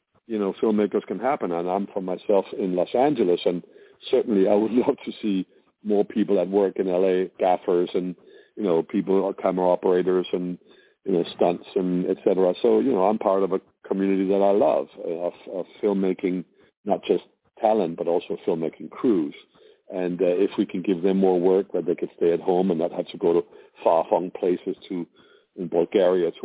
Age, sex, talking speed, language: 50-69, male, 205 wpm, English